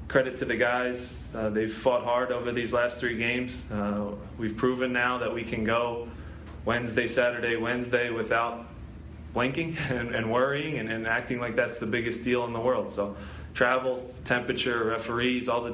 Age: 20-39